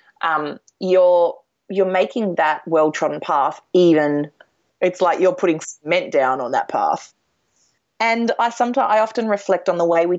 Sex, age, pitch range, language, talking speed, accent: female, 30-49, 160-210 Hz, English, 160 wpm, Australian